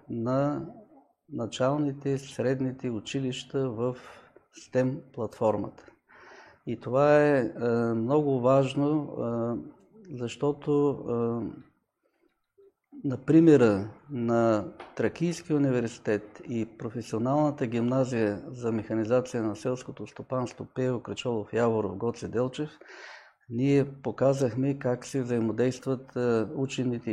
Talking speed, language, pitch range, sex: 80 wpm, Bulgarian, 115-140 Hz, male